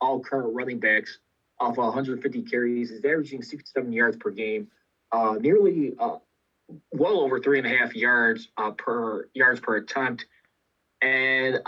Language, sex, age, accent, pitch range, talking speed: English, male, 20-39, American, 120-150 Hz, 150 wpm